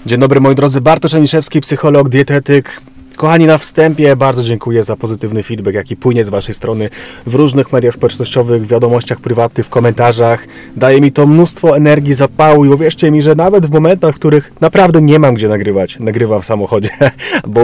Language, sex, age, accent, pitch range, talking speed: Polish, male, 30-49, native, 120-155 Hz, 185 wpm